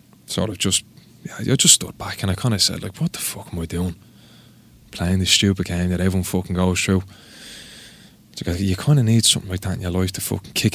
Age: 20-39